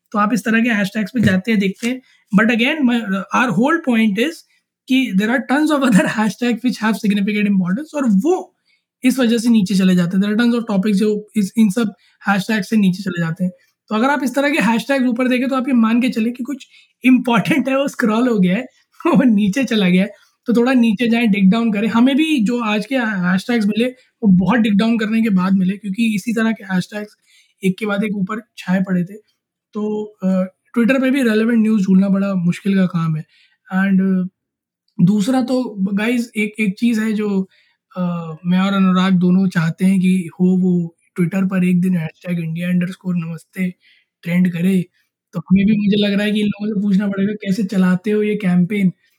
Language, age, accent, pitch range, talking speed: Hindi, 20-39, native, 185-235 Hz, 195 wpm